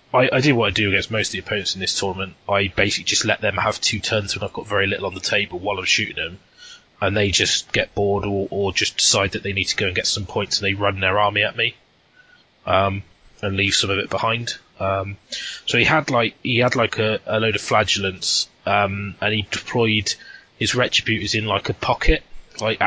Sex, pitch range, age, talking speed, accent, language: male, 100-120 Hz, 20-39, 235 wpm, British, English